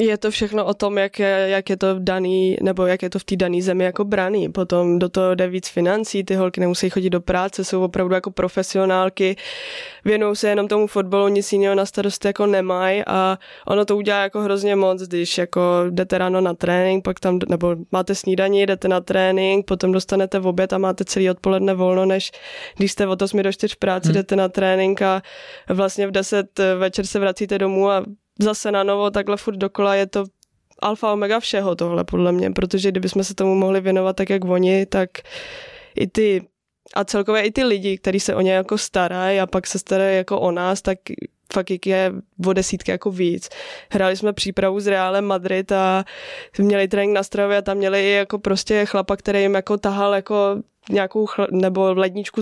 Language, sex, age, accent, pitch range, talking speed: Czech, female, 20-39, native, 185-200 Hz, 200 wpm